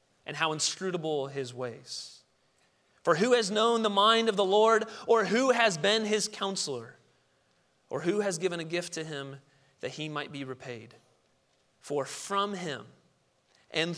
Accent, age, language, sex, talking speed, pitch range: American, 30-49, English, male, 160 wpm, 140-200 Hz